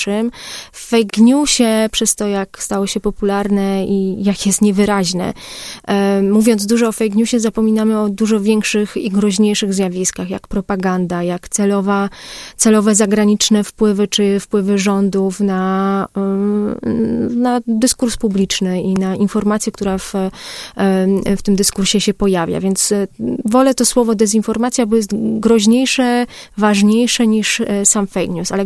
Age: 30-49